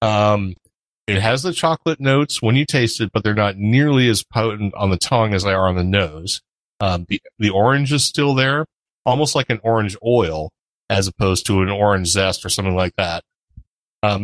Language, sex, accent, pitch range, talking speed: English, male, American, 100-120 Hz, 200 wpm